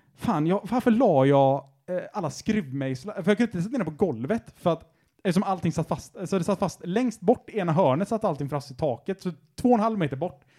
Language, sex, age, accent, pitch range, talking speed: Swedish, male, 30-49, Norwegian, 155-210 Hz, 230 wpm